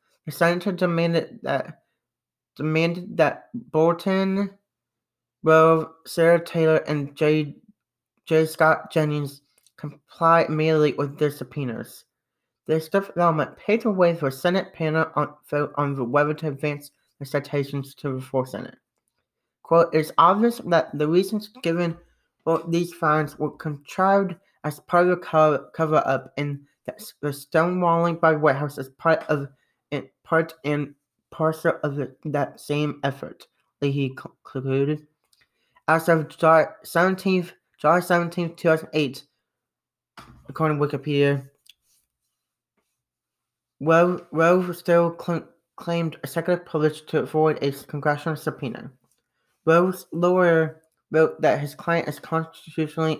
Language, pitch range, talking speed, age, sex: English, 145-170 Hz, 125 wpm, 30-49, male